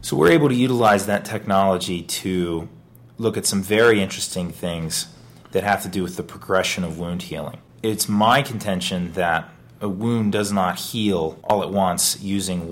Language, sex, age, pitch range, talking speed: English, male, 30-49, 85-100 Hz, 175 wpm